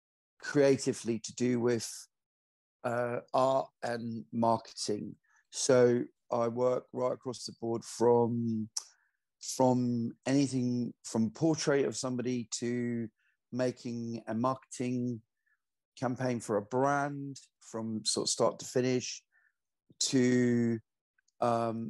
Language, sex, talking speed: English, male, 105 wpm